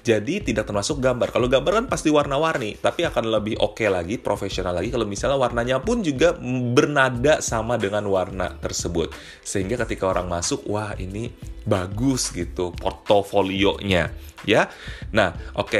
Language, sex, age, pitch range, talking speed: Indonesian, male, 30-49, 90-115 Hz, 150 wpm